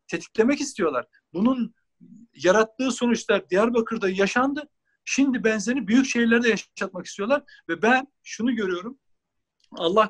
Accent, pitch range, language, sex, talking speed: native, 205-265 Hz, Turkish, male, 105 wpm